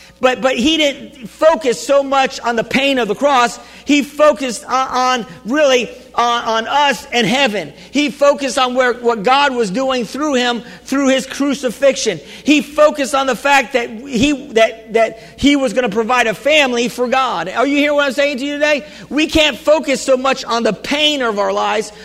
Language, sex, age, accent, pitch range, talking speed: English, male, 50-69, American, 240-290 Hz, 200 wpm